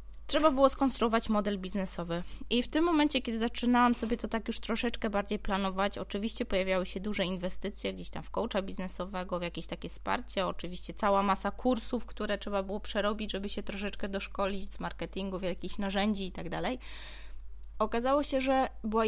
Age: 20-39